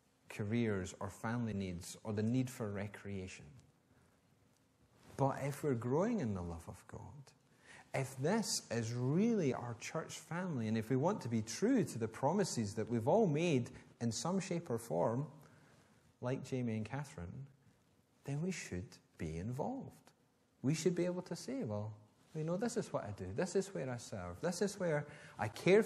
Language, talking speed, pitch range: English, 180 wpm, 110-145 Hz